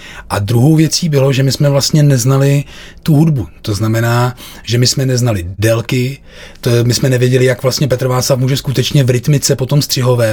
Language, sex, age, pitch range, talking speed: Czech, male, 30-49, 120-140 Hz, 180 wpm